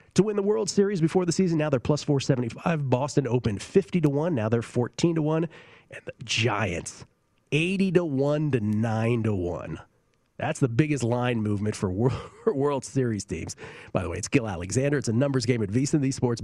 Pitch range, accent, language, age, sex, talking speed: 105-145 Hz, American, English, 40-59, male, 200 wpm